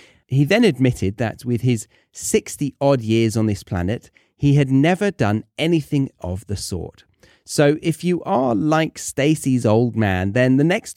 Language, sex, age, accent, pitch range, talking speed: English, male, 30-49, British, 95-135 Hz, 165 wpm